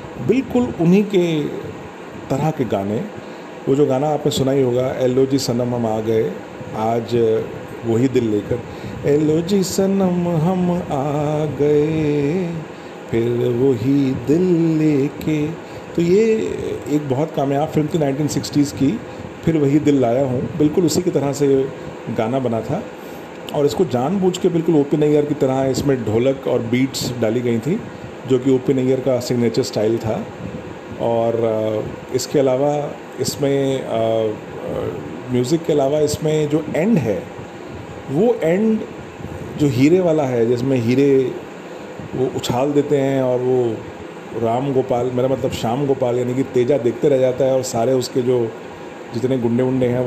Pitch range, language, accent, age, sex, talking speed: 120-150 Hz, Hindi, native, 40-59, male, 145 wpm